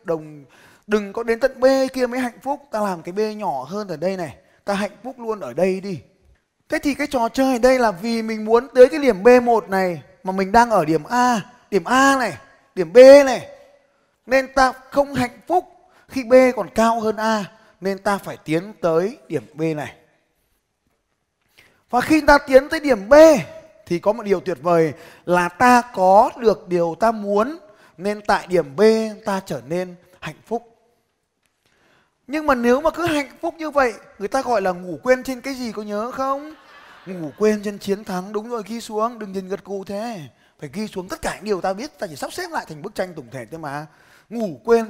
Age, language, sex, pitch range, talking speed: 20-39, Vietnamese, male, 185-255 Hz, 215 wpm